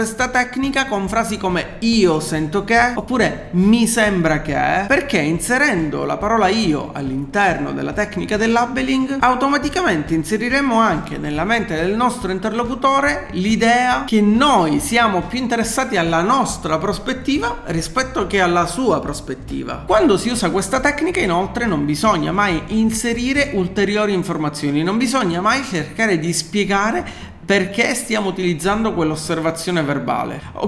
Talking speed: 135 wpm